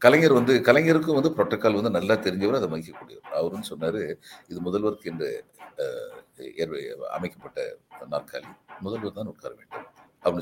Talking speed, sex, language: 130 wpm, male, Tamil